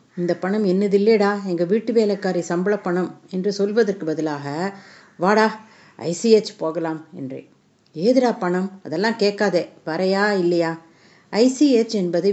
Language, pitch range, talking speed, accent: Tamil, 170-210 Hz, 115 wpm, native